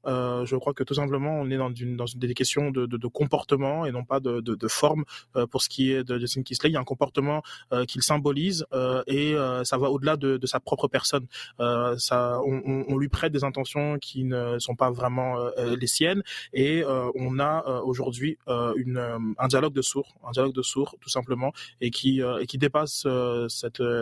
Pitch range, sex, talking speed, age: 130-150 Hz, male, 240 wpm, 20-39